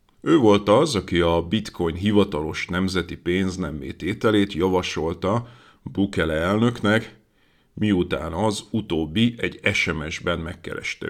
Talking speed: 105 wpm